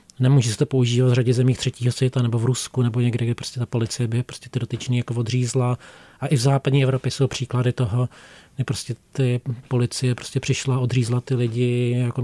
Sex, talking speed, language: male, 210 wpm, Czech